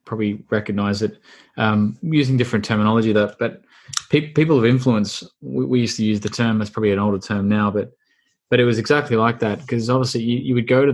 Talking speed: 220 wpm